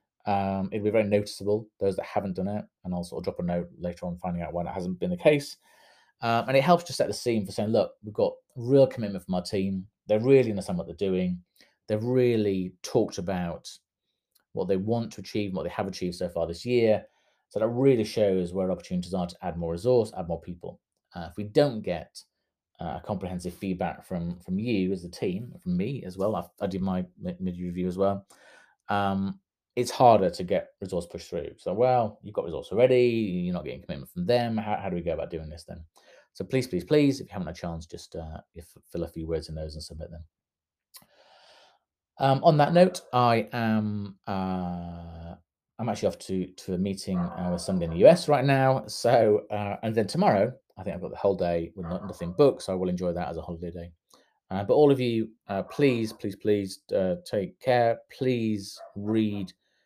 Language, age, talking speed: English, 30-49, 220 wpm